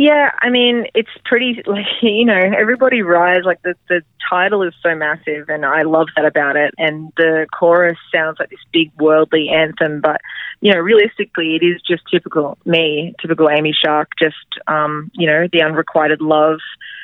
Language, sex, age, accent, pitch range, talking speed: English, female, 20-39, Australian, 155-180 Hz, 180 wpm